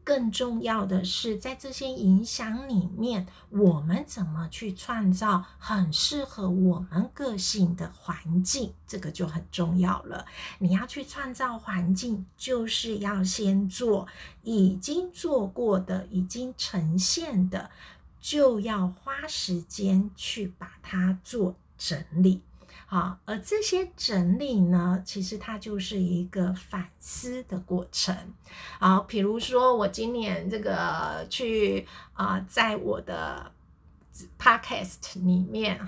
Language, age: Chinese, 50-69